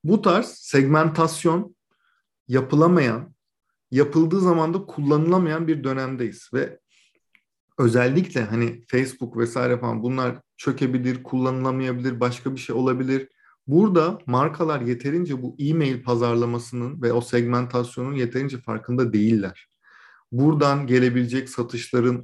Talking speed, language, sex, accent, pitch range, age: 100 wpm, Turkish, male, native, 120-140 Hz, 40-59